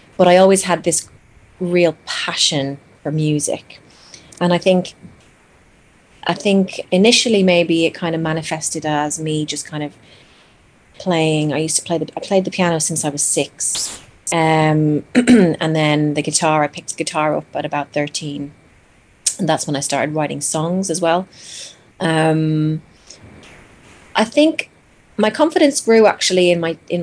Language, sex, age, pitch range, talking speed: English, female, 30-49, 155-190 Hz, 160 wpm